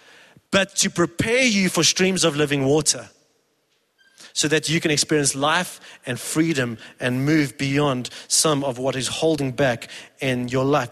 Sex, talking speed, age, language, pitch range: male, 160 wpm, 30-49, English, 145-185 Hz